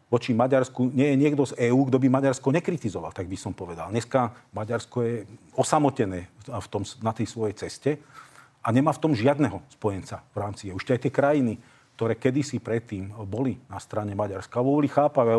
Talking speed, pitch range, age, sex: 185 wpm, 110-140 Hz, 40-59, male